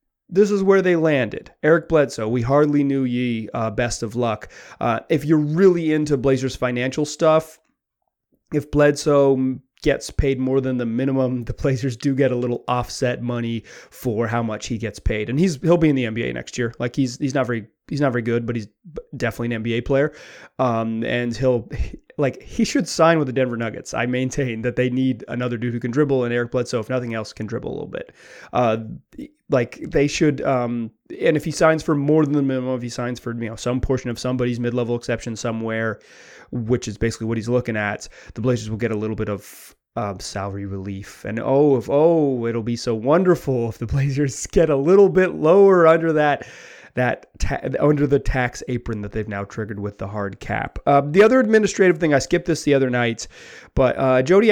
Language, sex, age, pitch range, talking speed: English, male, 30-49, 120-155 Hz, 210 wpm